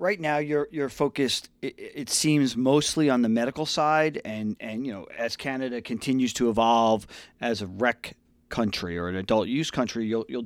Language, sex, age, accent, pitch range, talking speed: English, male, 40-59, American, 110-145 Hz, 190 wpm